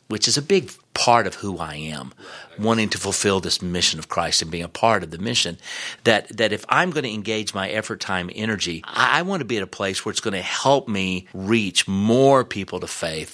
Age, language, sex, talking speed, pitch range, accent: 40-59, English, male, 235 wpm, 90-110 Hz, American